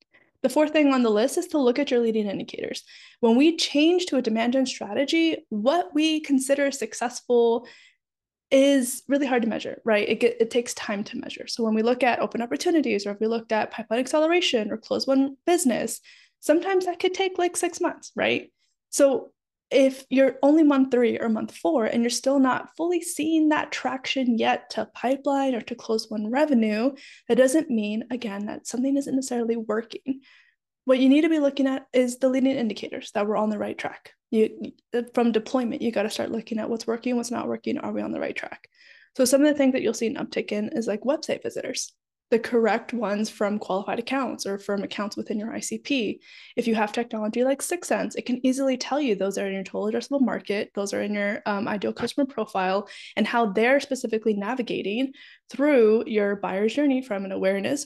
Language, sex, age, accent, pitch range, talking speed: English, female, 20-39, American, 220-280 Hz, 205 wpm